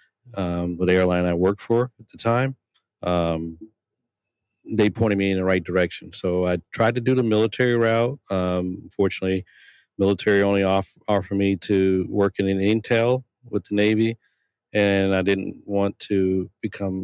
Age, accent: 40-59, American